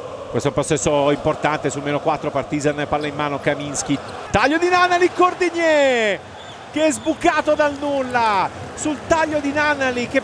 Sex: male